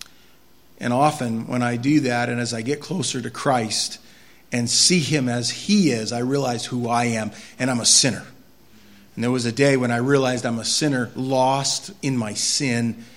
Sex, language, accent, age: male, English, American, 40-59